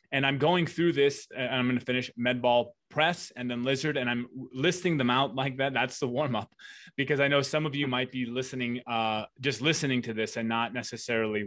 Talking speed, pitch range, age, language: 230 wpm, 120-135 Hz, 20-39, English